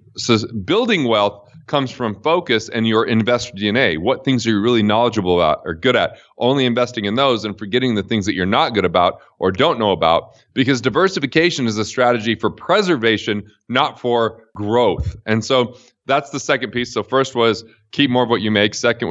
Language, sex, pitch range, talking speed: English, male, 110-130 Hz, 200 wpm